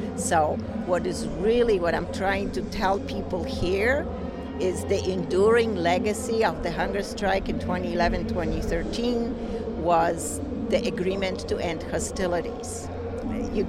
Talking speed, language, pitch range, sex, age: 125 wpm, English, 180-230 Hz, female, 50-69